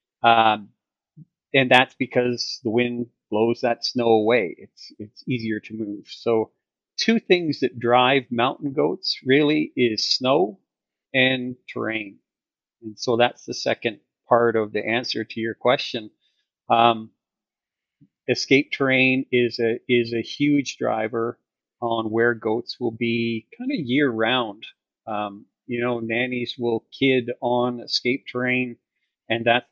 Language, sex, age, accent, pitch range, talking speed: English, male, 40-59, American, 115-125 Hz, 135 wpm